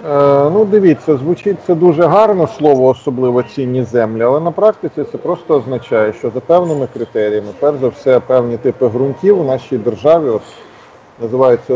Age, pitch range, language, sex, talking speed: 40-59, 115-145 Hz, Ukrainian, male, 160 wpm